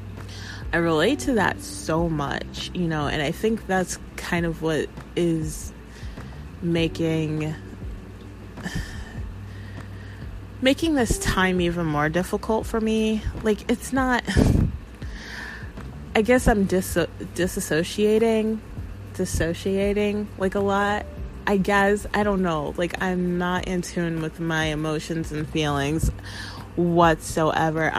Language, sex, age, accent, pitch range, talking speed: English, female, 20-39, American, 155-200 Hz, 115 wpm